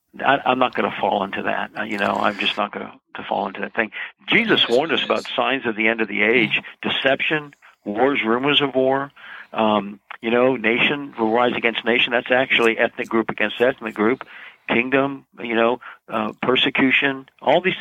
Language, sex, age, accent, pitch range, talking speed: English, male, 60-79, American, 115-145 Hz, 190 wpm